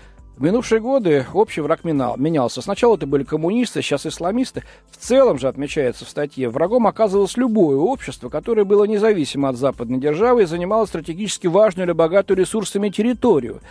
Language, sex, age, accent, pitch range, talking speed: Russian, male, 40-59, native, 145-205 Hz, 160 wpm